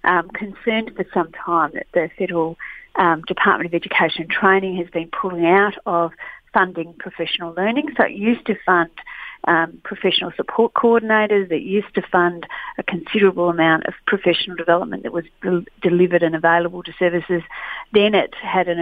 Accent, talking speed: Australian, 170 wpm